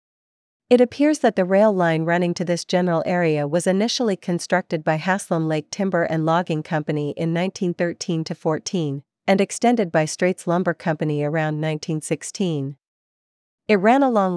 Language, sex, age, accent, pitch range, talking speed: English, female, 40-59, American, 160-190 Hz, 140 wpm